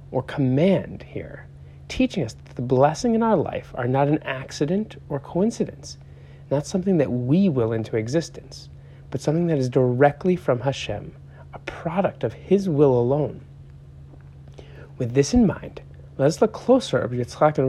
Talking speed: 165 wpm